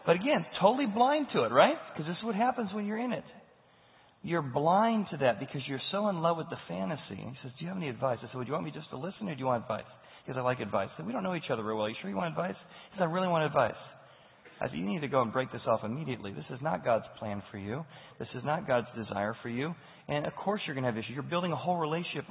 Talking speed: 300 wpm